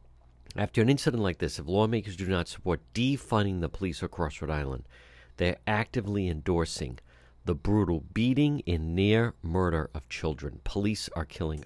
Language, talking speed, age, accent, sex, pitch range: English, 155 wpm, 50-69, American, male, 75-105 Hz